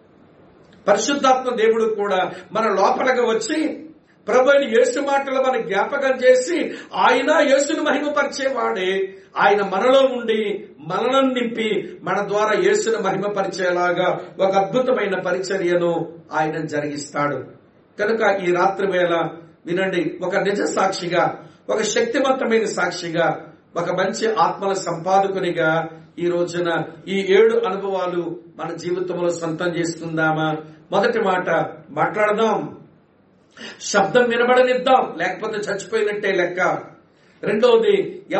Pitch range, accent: 175-255 Hz, Indian